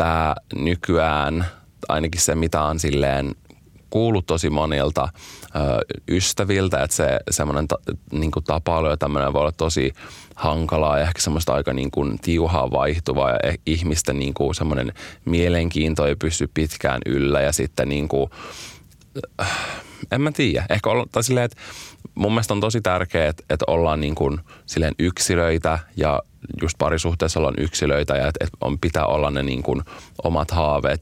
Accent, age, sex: native, 20-39, male